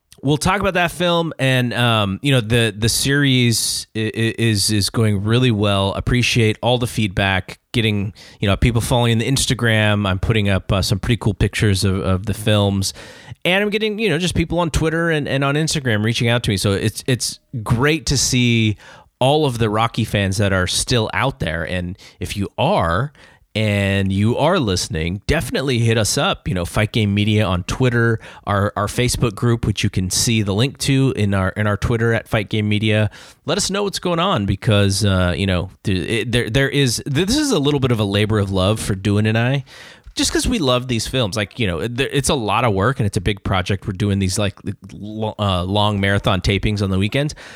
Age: 30-49